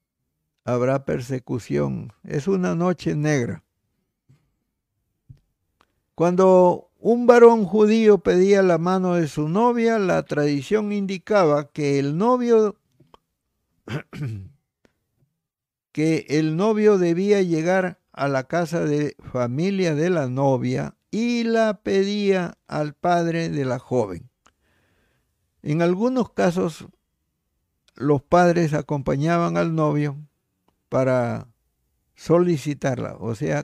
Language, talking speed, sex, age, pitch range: Spanish, 100 wpm, male, 60-79, 135-190 Hz